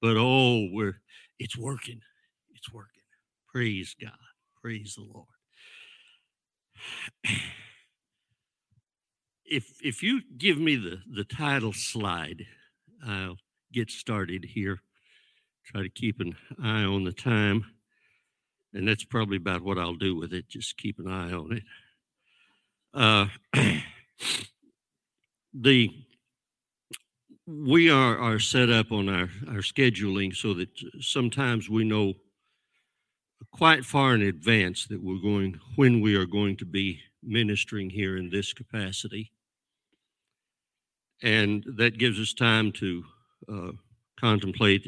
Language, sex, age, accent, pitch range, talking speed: English, male, 60-79, American, 100-120 Hz, 120 wpm